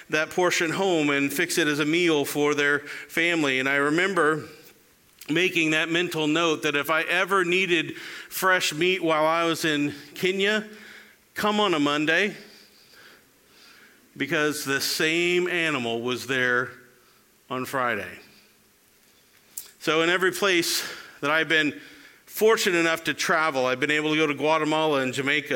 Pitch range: 150-175 Hz